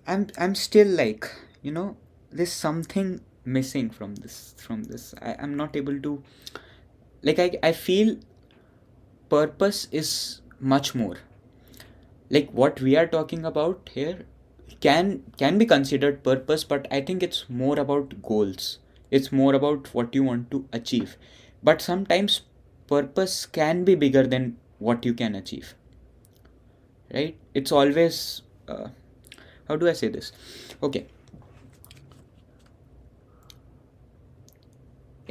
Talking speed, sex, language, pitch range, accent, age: 125 wpm, male, Hindi, 120-150 Hz, native, 20-39